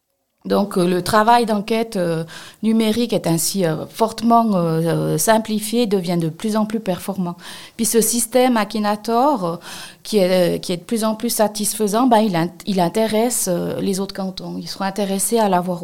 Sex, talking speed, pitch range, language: female, 180 wpm, 180-225 Hz, French